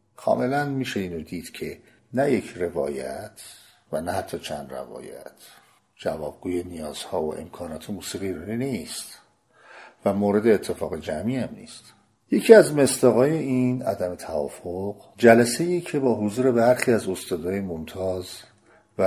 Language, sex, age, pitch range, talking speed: Persian, male, 50-69, 90-125 Hz, 125 wpm